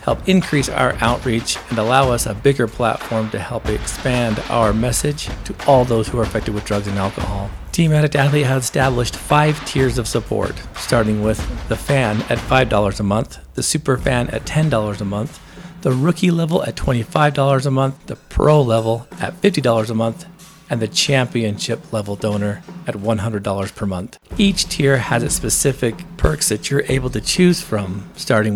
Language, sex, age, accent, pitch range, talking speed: English, male, 40-59, American, 110-140 Hz, 180 wpm